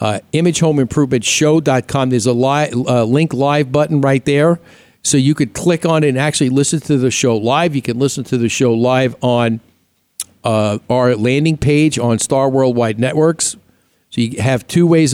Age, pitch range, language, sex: 50-69, 120-150 Hz, English, male